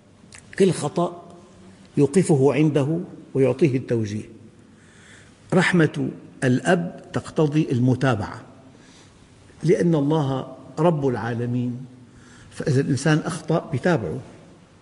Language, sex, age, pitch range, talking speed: Arabic, male, 50-69, 115-150 Hz, 75 wpm